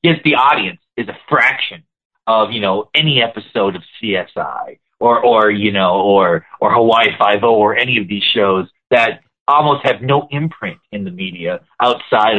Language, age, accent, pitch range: English, 40-59, American, 110-150 Hz